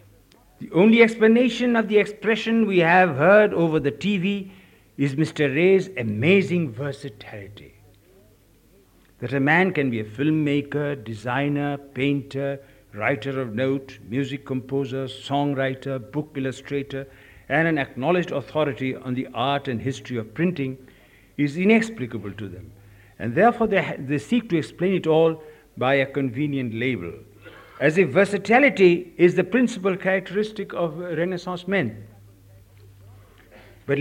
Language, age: Hindi, 60-79